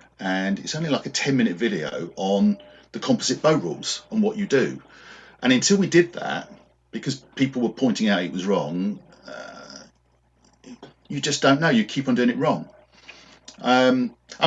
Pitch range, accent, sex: 80-130 Hz, British, male